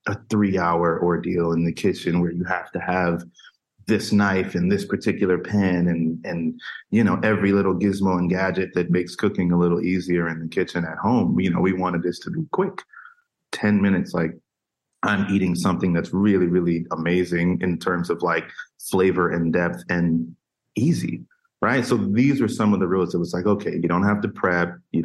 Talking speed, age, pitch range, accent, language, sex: 200 wpm, 30-49, 85-100 Hz, American, English, male